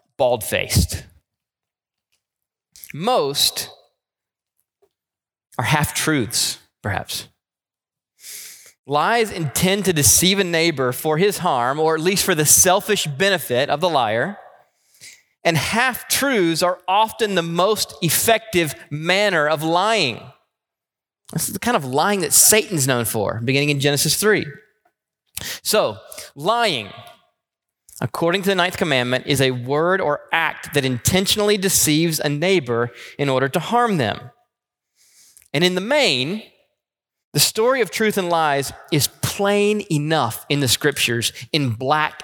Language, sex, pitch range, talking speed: English, male, 140-200 Hz, 125 wpm